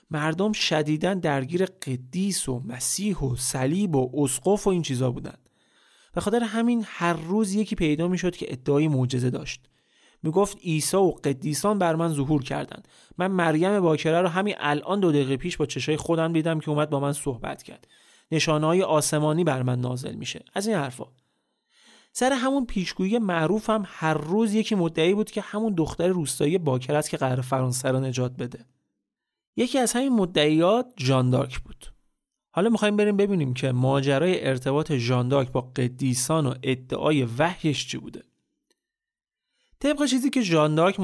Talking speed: 160 wpm